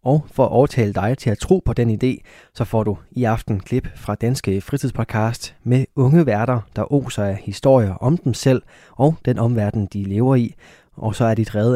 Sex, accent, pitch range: male, native, 105-135 Hz